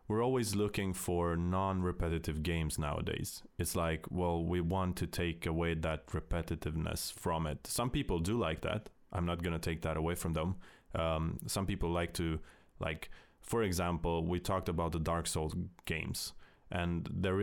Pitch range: 85-95 Hz